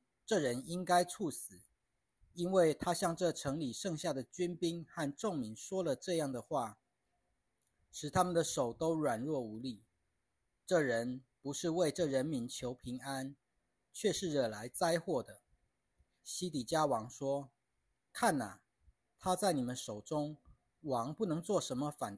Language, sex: Chinese, male